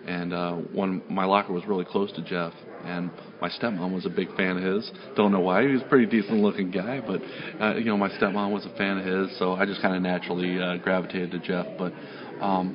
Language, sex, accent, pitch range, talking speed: English, male, American, 95-105 Hz, 240 wpm